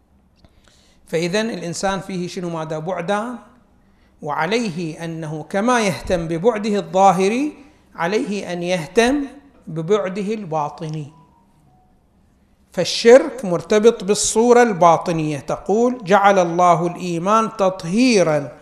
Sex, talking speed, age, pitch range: male, 85 wpm, 60-79, 160-210 Hz